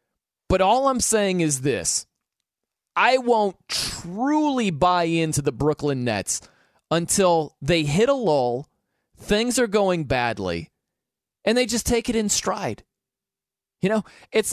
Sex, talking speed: male, 135 wpm